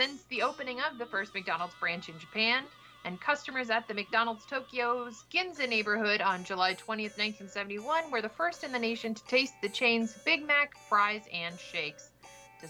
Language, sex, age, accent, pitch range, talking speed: English, female, 30-49, American, 205-255 Hz, 180 wpm